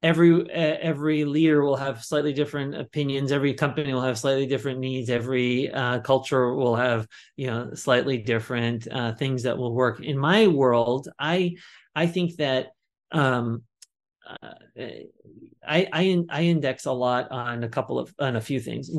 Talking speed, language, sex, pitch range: 170 wpm, English, male, 125-155 Hz